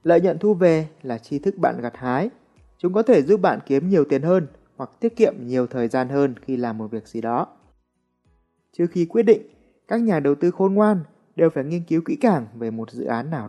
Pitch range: 125-190 Hz